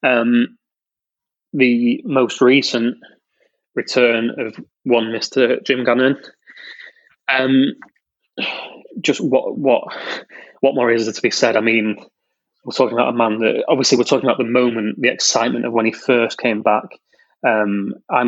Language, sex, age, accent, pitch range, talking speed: English, male, 20-39, British, 110-125 Hz, 145 wpm